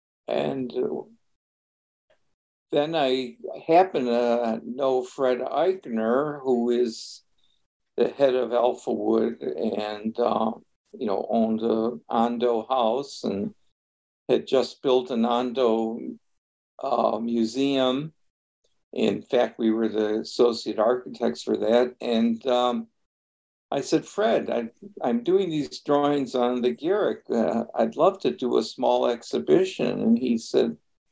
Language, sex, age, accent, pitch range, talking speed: English, male, 60-79, American, 110-135 Hz, 120 wpm